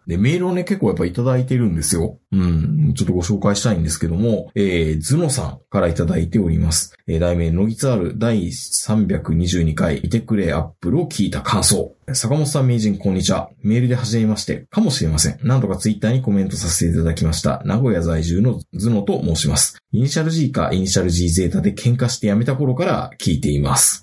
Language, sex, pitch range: Japanese, male, 85-135 Hz